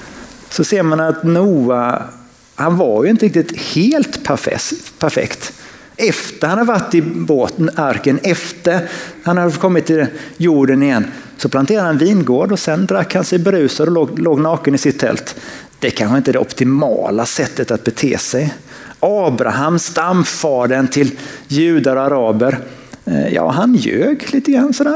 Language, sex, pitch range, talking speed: Swedish, male, 145-200 Hz, 160 wpm